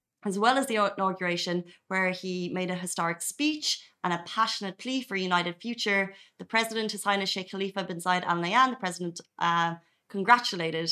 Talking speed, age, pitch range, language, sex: 180 wpm, 30-49, 170-200 Hz, Arabic, female